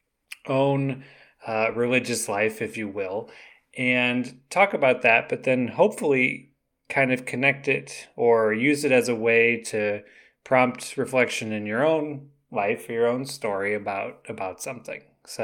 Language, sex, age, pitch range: English, male, 20-39, 110-135 Hz